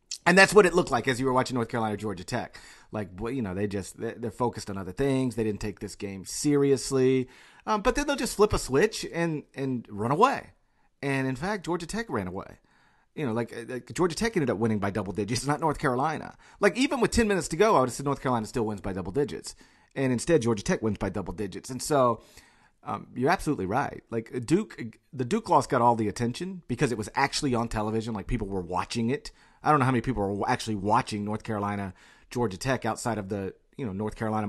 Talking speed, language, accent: 235 wpm, English, American